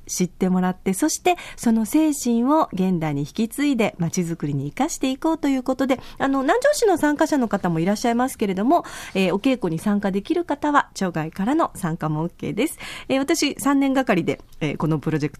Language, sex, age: Japanese, female, 40-59